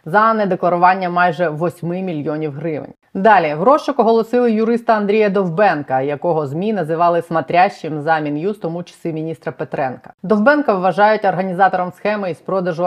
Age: 30-49